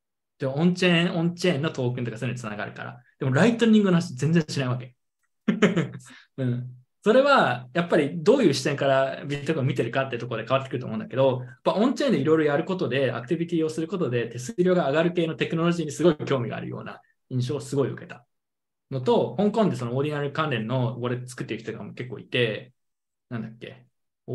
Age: 20-39